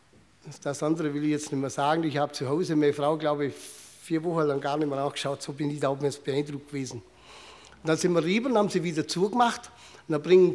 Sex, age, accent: male, 60-79, German